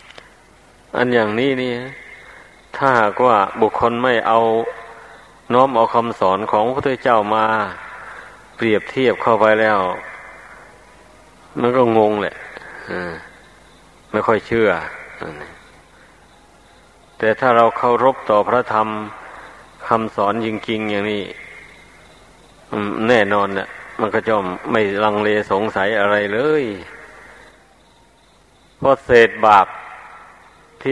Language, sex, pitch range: Thai, male, 105-115 Hz